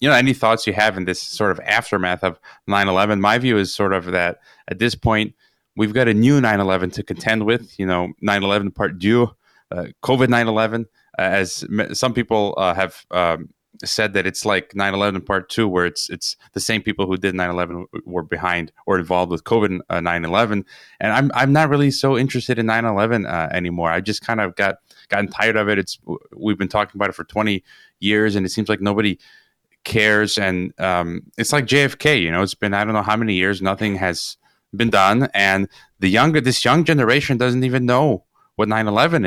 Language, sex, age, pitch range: English, male, 20-39, 95-115 Hz